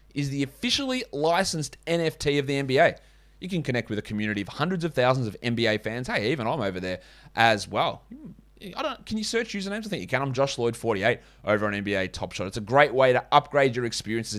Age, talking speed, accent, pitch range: 20-39, 225 wpm, Australian, 110-155 Hz